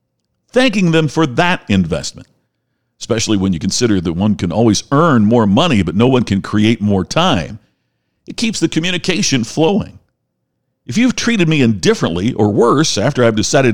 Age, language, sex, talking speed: 50-69, English, male, 165 wpm